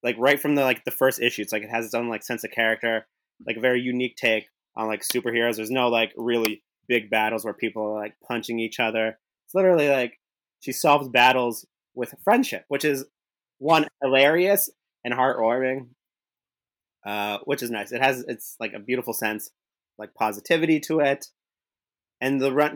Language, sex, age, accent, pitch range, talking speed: English, male, 30-49, American, 110-130 Hz, 185 wpm